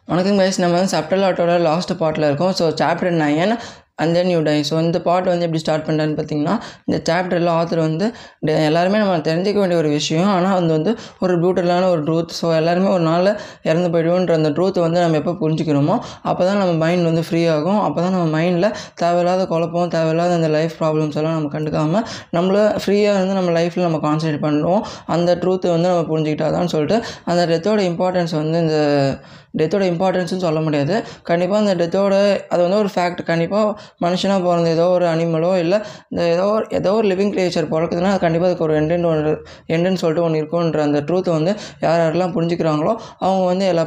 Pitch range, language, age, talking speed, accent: 160-185 Hz, Tamil, 20-39, 185 wpm, native